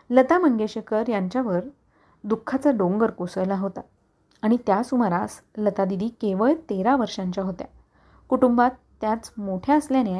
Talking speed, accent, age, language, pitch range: 110 wpm, native, 20-39, Marathi, 195-255 Hz